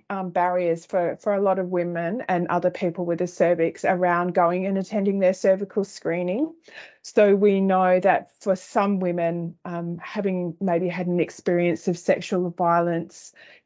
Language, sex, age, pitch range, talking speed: English, female, 20-39, 175-210 Hz, 165 wpm